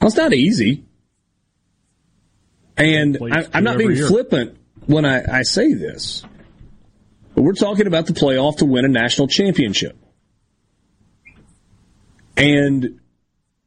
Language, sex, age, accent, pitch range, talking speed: English, male, 40-59, American, 100-165 Hz, 120 wpm